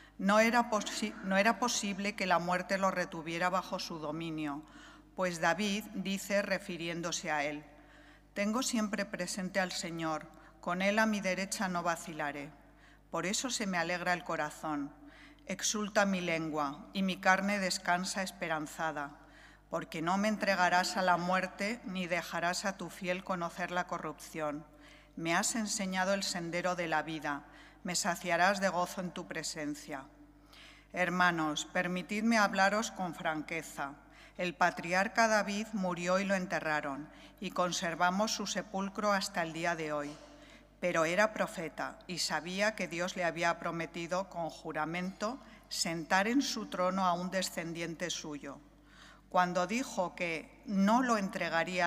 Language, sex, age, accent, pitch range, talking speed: English, female, 40-59, Spanish, 160-195 Hz, 140 wpm